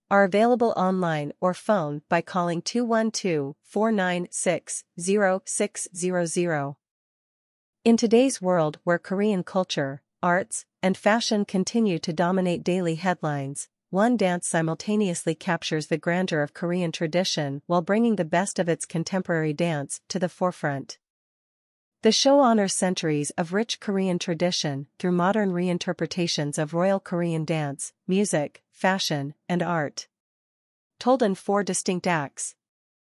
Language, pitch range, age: English, 160-195 Hz, 40-59